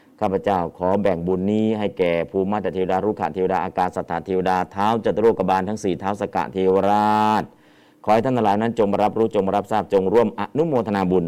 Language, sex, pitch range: Thai, male, 90-115 Hz